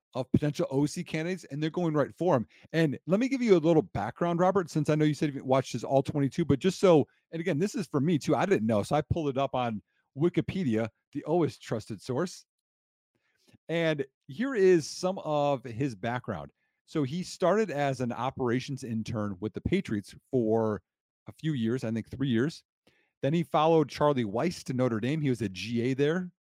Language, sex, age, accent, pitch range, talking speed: English, male, 40-59, American, 115-155 Hz, 200 wpm